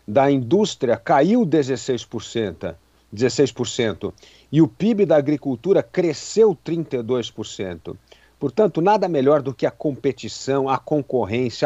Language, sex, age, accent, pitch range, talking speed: Portuguese, male, 50-69, Brazilian, 130-180 Hz, 110 wpm